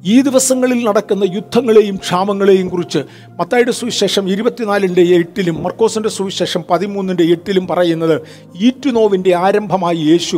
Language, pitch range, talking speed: Malayalam, 170-205 Hz, 105 wpm